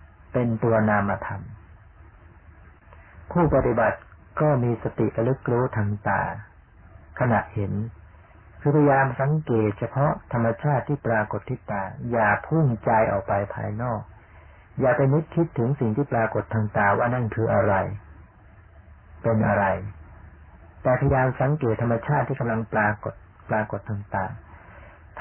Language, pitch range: Thai, 95-125 Hz